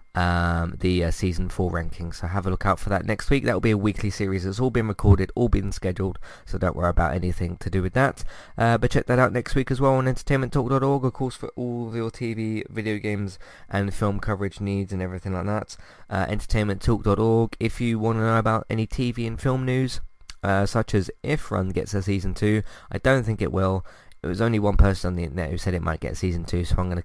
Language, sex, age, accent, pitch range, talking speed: English, male, 20-39, British, 90-115 Hz, 245 wpm